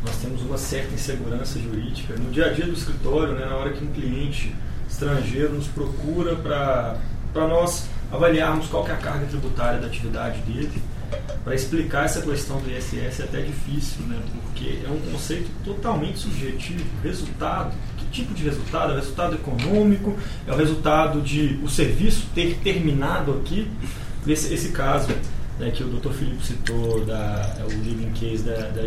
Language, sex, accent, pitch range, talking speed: Portuguese, male, Brazilian, 125-160 Hz, 175 wpm